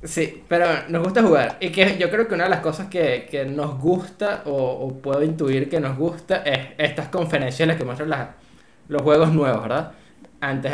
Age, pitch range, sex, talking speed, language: 20-39, 135-165 Hz, male, 210 wpm, Spanish